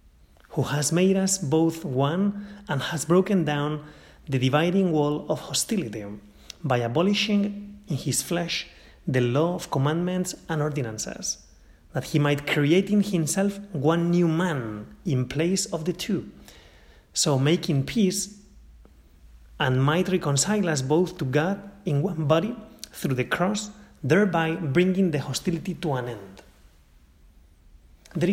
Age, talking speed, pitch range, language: 30-49, 135 wpm, 125-175 Hz, English